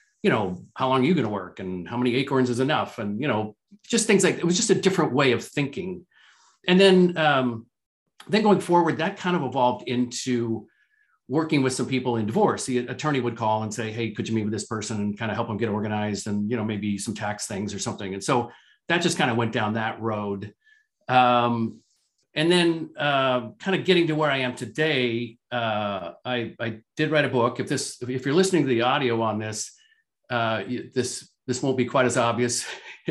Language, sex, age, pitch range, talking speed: English, male, 50-69, 120-165 Hz, 220 wpm